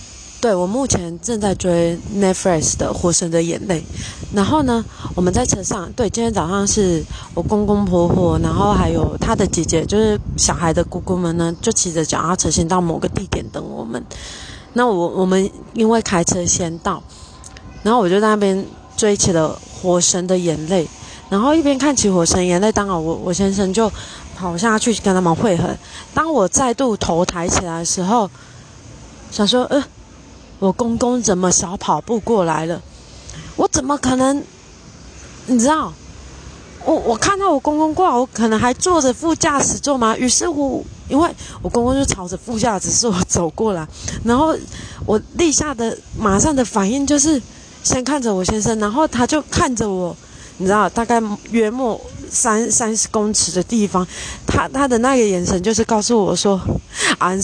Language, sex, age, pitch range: Chinese, female, 20-39, 175-240 Hz